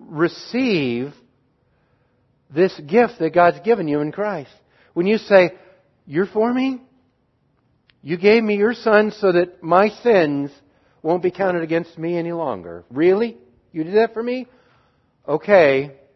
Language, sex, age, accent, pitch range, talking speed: English, male, 60-79, American, 135-190 Hz, 140 wpm